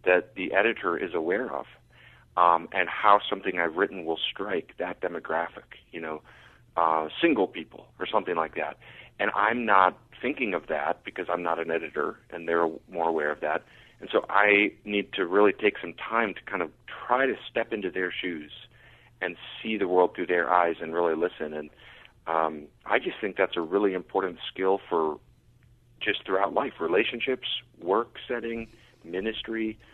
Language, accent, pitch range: English, American, 85-105 Hz